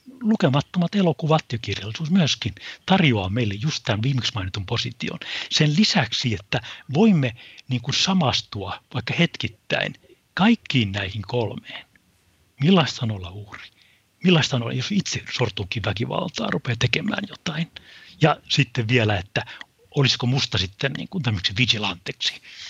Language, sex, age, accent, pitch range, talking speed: Finnish, male, 60-79, native, 110-145 Hz, 125 wpm